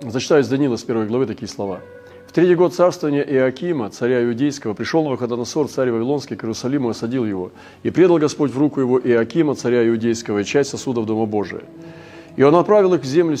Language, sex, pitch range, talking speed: Russian, male, 120-160 Hz, 200 wpm